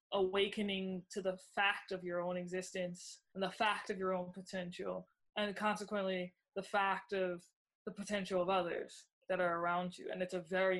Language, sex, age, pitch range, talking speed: English, female, 20-39, 180-210 Hz, 180 wpm